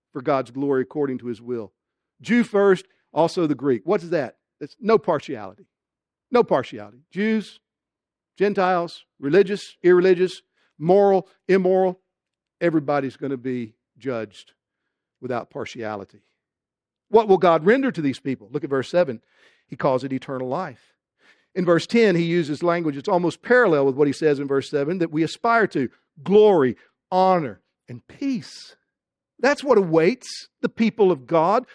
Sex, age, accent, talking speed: male, 50-69, American, 145 wpm